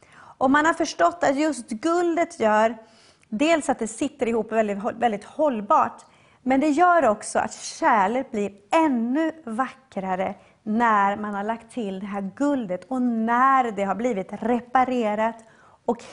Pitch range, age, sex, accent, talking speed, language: 220-285 Hz, 30-49, female, Swedish, 150 wpm, English